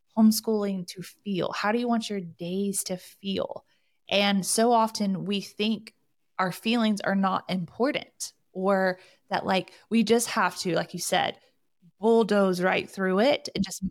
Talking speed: 160 wpm